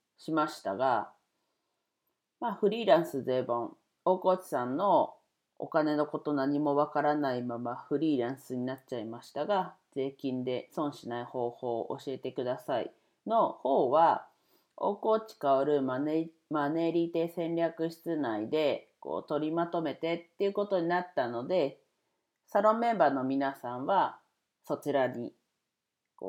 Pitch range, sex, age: 130-170 Hz, female, 40-59